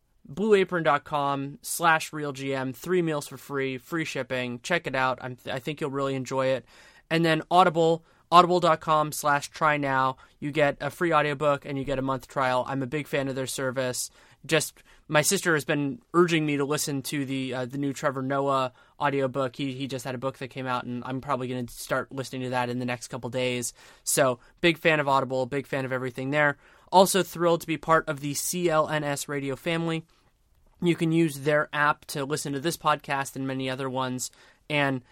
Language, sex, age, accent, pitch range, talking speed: English, male, 20-39, American, 130-160 Hz, 195 wpm